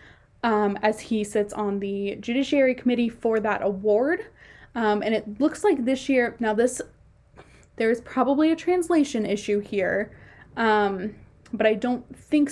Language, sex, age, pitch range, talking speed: English, female, 10-29, 215-280 Hz, 150 wpm